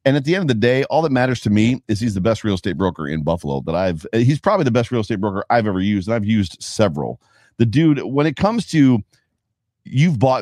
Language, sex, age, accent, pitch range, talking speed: English, male, 40-59, American, 90-120 Hz, 260 wpm